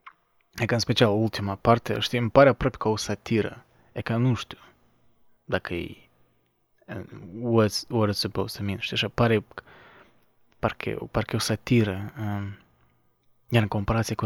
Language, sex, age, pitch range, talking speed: Romanian, male, 20-39, 110-120 Hz, 150 wpm